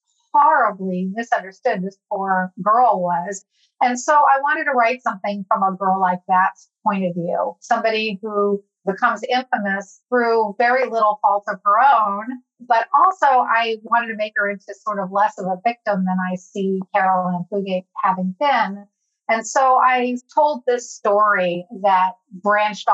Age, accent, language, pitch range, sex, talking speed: 30-49, American, English, 190-240 Hz, female, 160 wpm